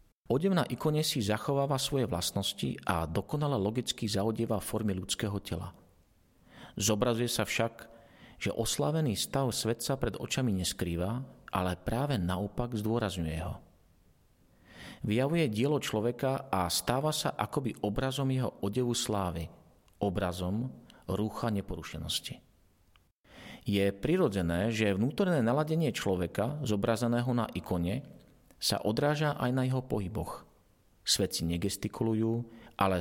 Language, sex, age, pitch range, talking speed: Slovak, male, 40-59, 95-125 Hz, 115 wpm